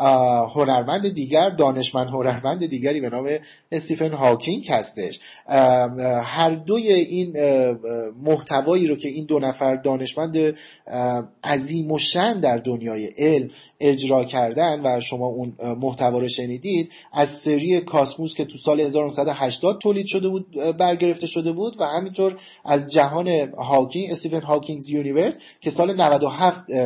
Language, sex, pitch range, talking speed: Persian, male, 135-185 Hz, 130 wpm